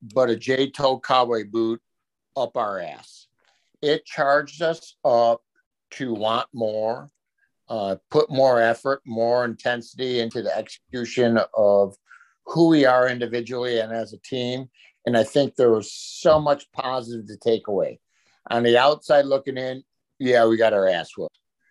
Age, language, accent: 60-79, English, American